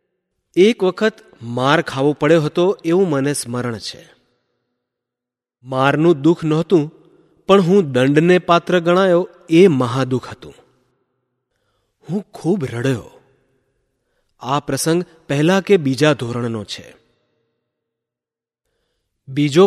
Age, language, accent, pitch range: 30-49, Gujarati, native, 130-175 Hz